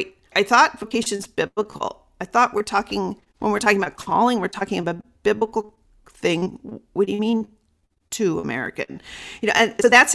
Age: 40-59